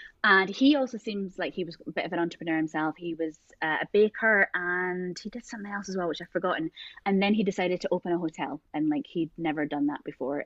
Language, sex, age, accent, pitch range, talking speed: English, female, 20-39, British, 170-225 Hz, 245 wpm